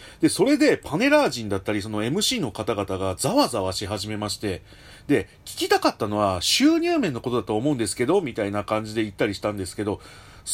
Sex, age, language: male, 40-59, Japanese